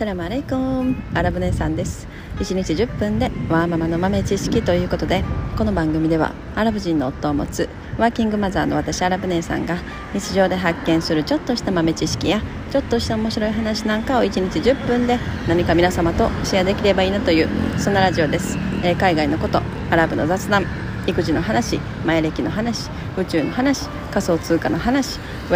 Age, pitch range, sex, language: 30-49, 160-225 Hz, female, Japanese